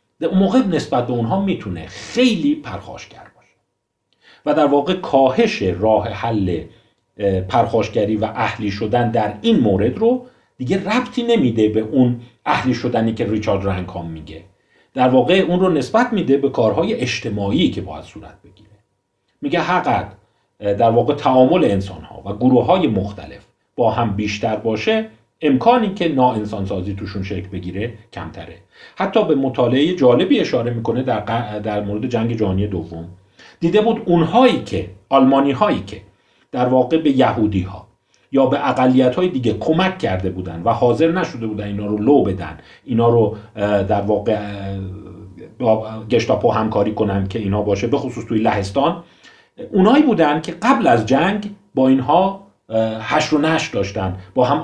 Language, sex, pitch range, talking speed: Persian, male, 100-145 Hz, 150 wpm